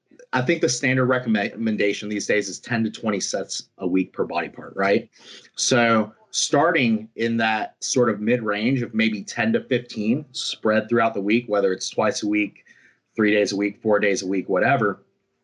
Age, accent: 30-49, American